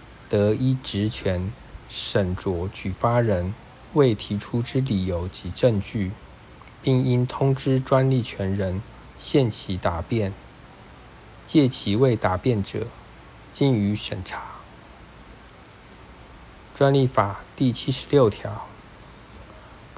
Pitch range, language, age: 100-125 Hz, Chinese, 50-69